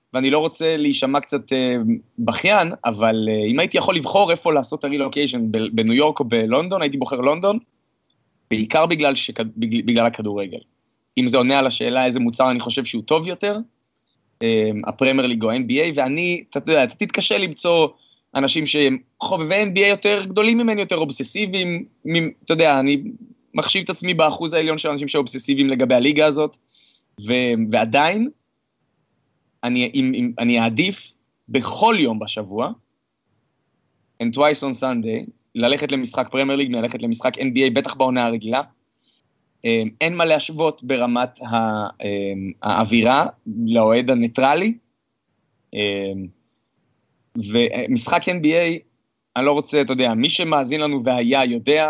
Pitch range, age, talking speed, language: 120-160 Hz, 20-39, 130 wpm, Hebrew